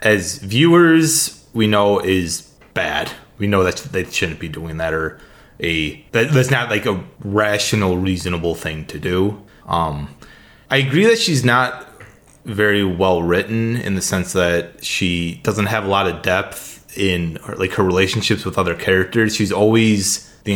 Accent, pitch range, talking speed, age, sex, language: American, 95-120 Hz, 160 wpm, 20-39, male, English